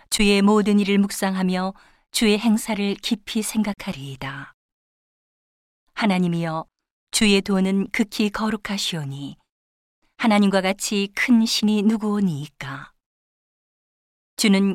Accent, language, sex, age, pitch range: native, Korean, female, 40-59, 180-215 Hz